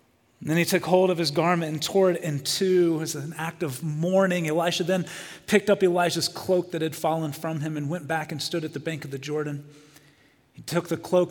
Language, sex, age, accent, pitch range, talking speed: English, male, 30-49, American, 145-180 Hz, 235 wpm